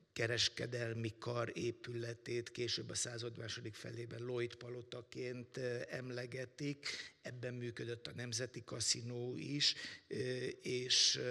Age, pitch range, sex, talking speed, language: 60-79, 115-125 Hz, male, 90 wpm, Hungarian